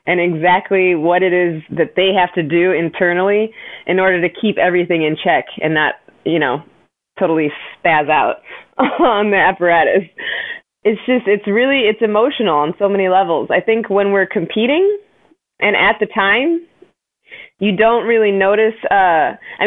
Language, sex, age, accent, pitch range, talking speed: English, female, 20-39, American, 170-215 Hz, 160 wpm